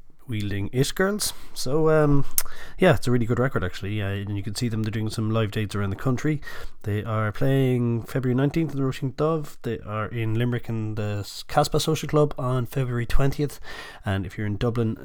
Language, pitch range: English, 95-120 Hz